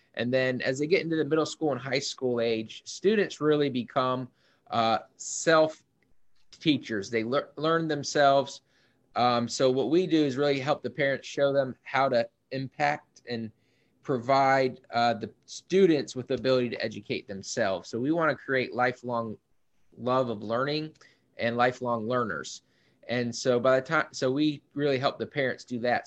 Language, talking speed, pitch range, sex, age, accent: English, 165 wpm, 120-150 Hz, male, 20-39, American